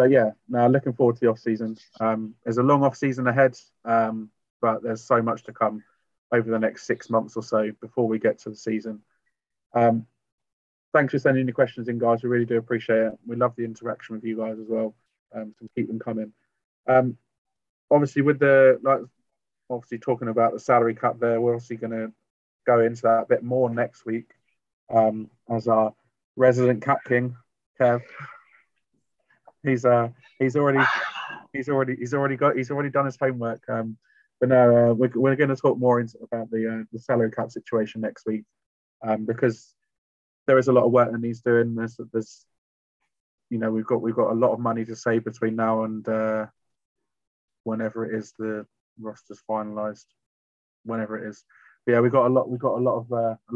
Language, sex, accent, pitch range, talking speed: English, male, British, 110-125 Hz, 200 wpm